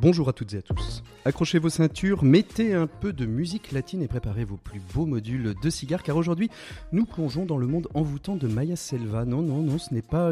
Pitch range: 120-155 Hz